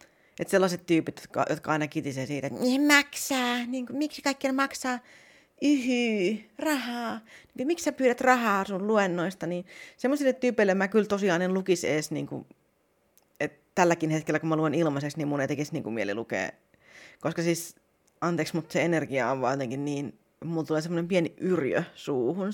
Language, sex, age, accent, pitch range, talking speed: Finnish, female, 30-49, native, 165-255 Hz, 175 wpm